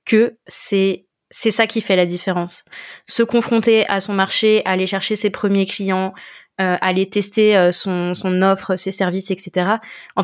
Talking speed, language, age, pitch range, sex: 170 wpm, French, 20-39, 185-220 Hz, female